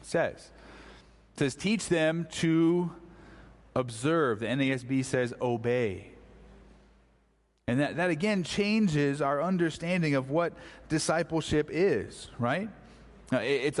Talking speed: 105 wpm